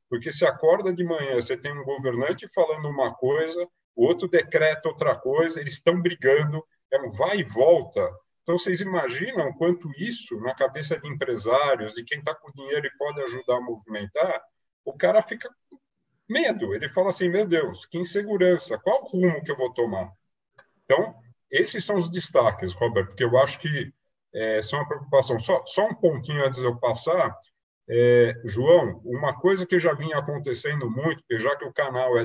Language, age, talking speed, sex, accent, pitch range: Portuguese, 50-69, 185 wpm, male, Brazilian, 125-180 Hz